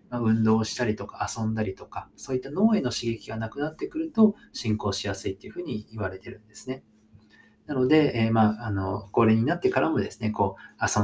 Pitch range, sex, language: 100-125 Hz, male, Japanese